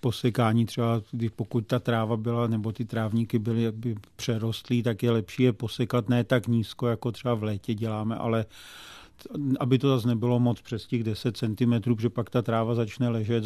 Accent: native